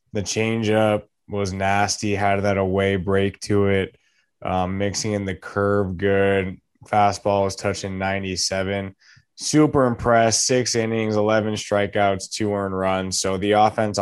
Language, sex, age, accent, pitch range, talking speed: English, male, 20-39, American, 95-115 Hz, 135 wpm